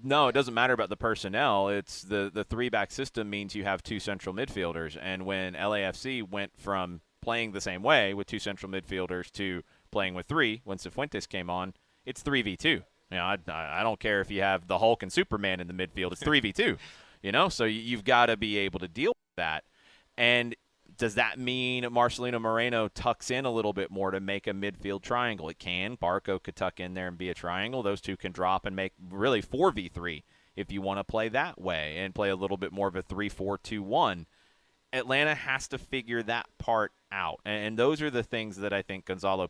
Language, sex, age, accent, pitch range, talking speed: English, male, 30-49, American, 95-115 Hz, 210 wpm